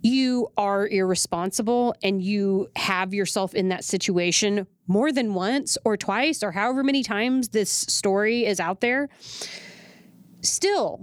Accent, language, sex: American, English, female